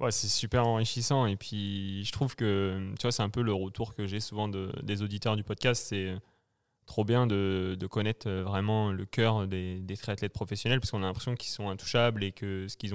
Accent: French